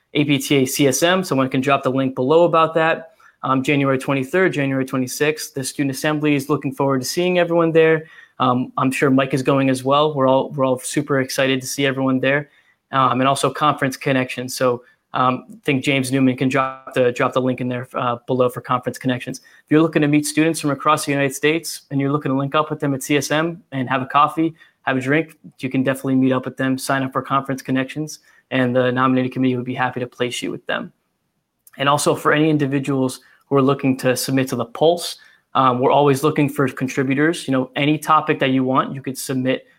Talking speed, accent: 225 wpm, American